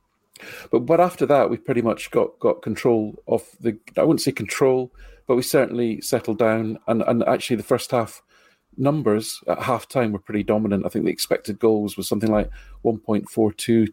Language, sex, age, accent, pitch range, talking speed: English, male, 40-59, British, 105-120 Hz, 185 wpm